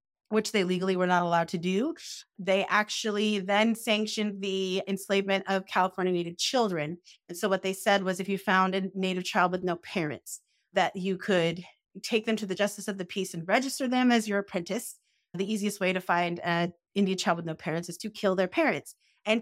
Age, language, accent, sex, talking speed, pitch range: 30-49, English, American, female, 205 wpm, 180-215 Hz